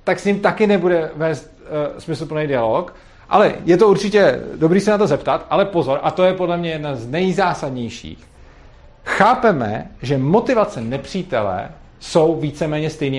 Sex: male